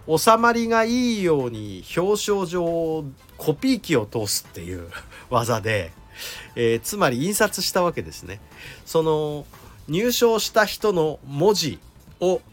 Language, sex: Japanese, male